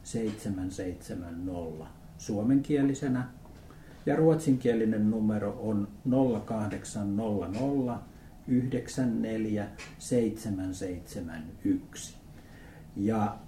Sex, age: male, 60-79